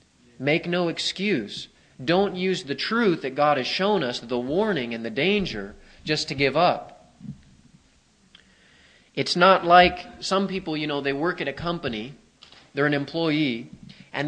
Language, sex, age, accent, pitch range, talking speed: English, male, 30-49, American, 120-160 Hz, 155 wpm